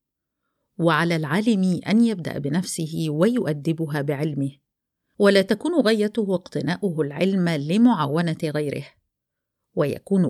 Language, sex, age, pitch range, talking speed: Arabic, female, 50-69, 160-210 Hz, 85 wpm